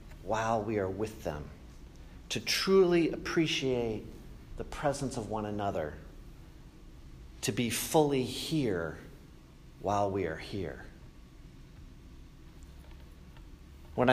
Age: 40-59